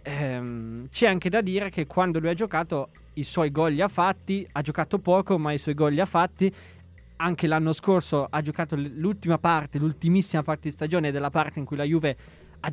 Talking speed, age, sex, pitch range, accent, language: 205 wpm, 20-39, male, 145-180 Hz, native, Italian